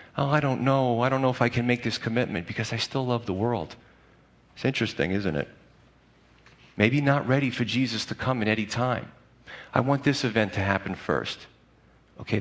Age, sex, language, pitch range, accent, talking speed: 40-59, male, English, 110-145 Hz, American, 200 wpm